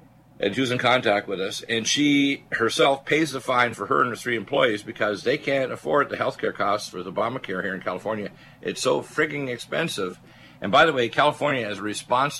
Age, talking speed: 50-69, 220 wpm